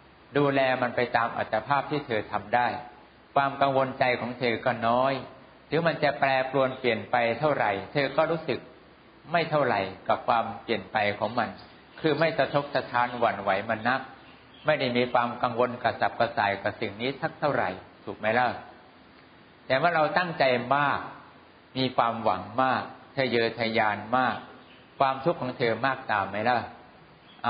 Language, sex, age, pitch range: English, male, 60-79, 115-145 Hz